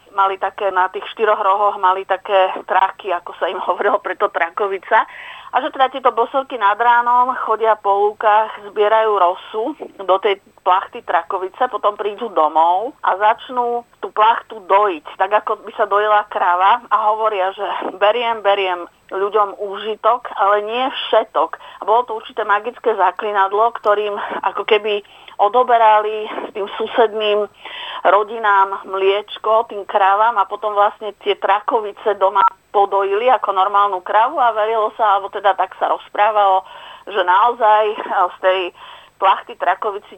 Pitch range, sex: 195-220 Hz, female